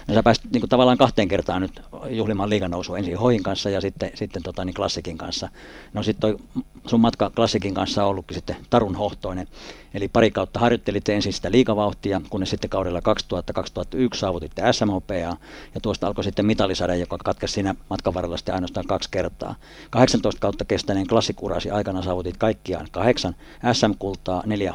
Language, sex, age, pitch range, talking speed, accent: Finnish, male, 50-69, 90-110 Hz, 165 wpm, native